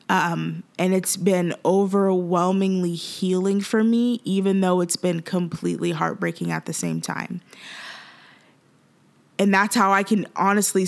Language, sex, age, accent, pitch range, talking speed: English, female, 20-39, American, 175-185 Hz, 130 wpm